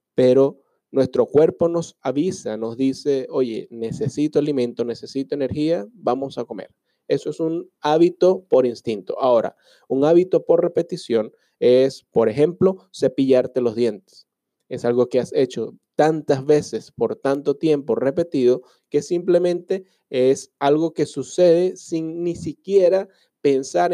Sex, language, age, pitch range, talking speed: male, Spanish, 30-49, 130-175 Hz, 135 wpm